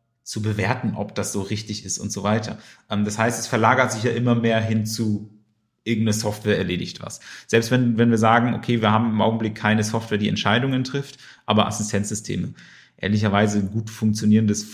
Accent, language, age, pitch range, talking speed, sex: German, German, 30-49, 105-125 Hz, 185 wpm, male